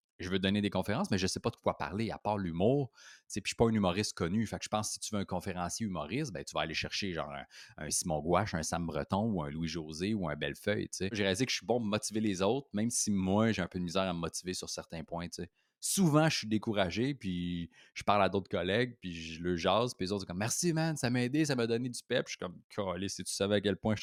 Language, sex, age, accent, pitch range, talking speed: French, male, 30-49, Canadian, 90-125 Hz, 295 wpm